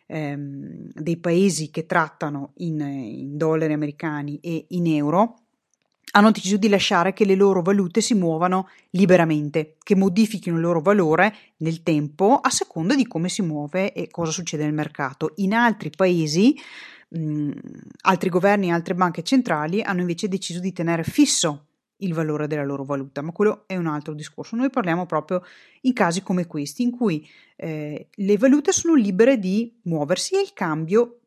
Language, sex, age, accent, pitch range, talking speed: Italian, female, 30-49, native, 160-220 Hz, 165 wpm